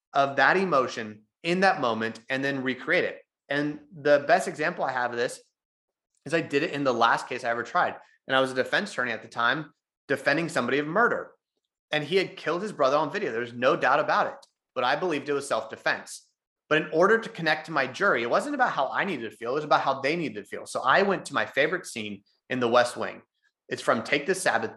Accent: American